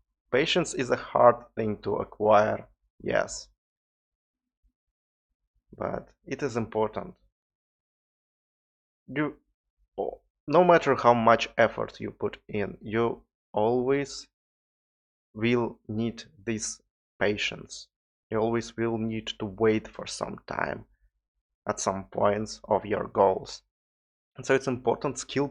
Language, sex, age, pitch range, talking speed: English, male, 30-49, 95-115 Hz, 110 wpm